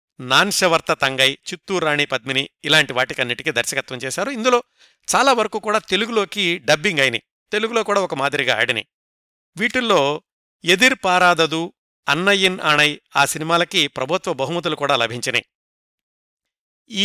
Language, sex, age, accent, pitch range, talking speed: Telugu, male, 50-69, native, 135-180 Hz, 115 wpm